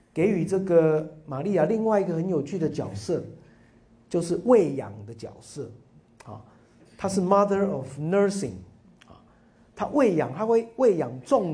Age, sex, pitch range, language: 50-69, male, 120-175 Hz, Chinese